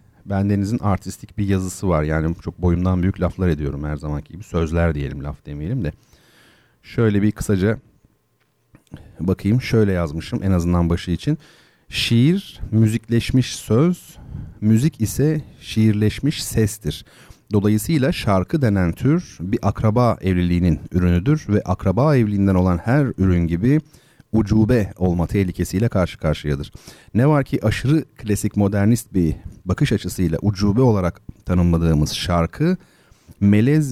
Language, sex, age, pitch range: Turkish, male, 40-59, 90-115 Hz